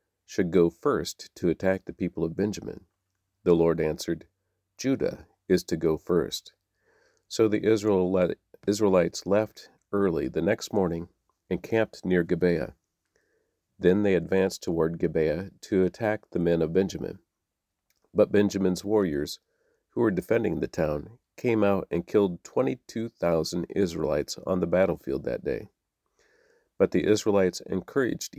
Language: English